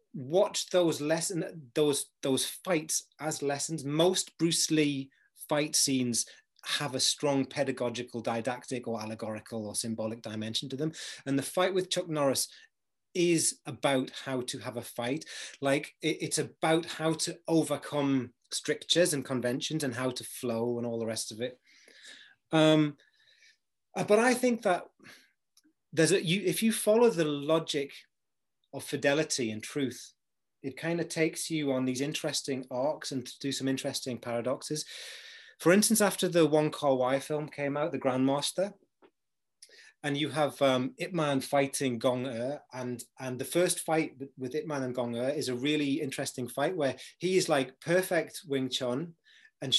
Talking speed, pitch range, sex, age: 165 wpm, 125-160 Hz, male, 30-49